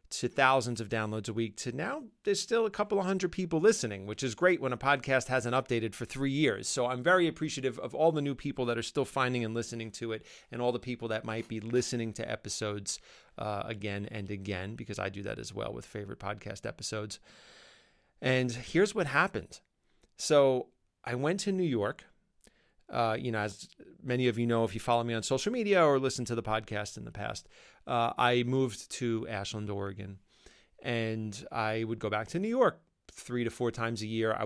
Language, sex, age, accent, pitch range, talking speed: English, male, 30-49, American, 110-135 Hz, 210 wpm